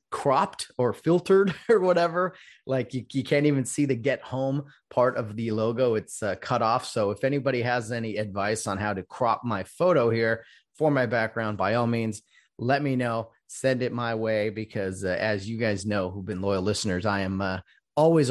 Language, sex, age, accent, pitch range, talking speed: English, male, 30-49, American, 105-125 Hz, 205 wpm